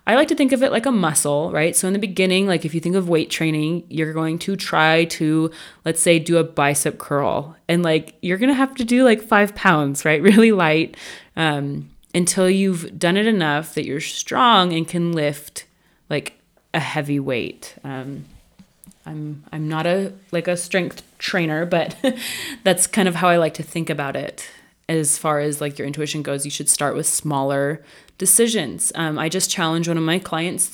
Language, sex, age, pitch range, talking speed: English, female, 20-39, 155-195 Hz, 200 wpm